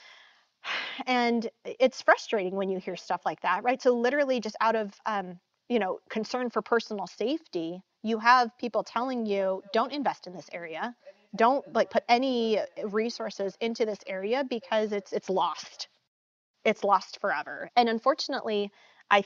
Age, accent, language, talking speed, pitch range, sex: 30-49, American, English, 155 wpm, 215-285 Hz, female